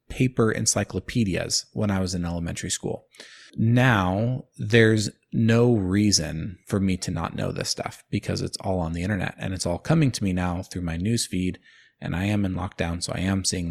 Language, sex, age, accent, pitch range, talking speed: English, male, 20-39, American, 90-110 Hz, 195 wpm